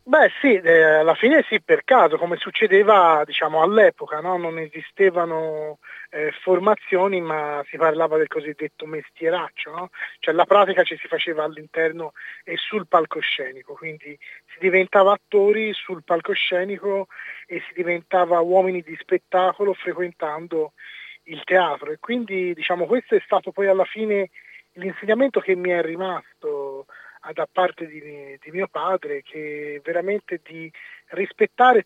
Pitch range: 165-210 Hz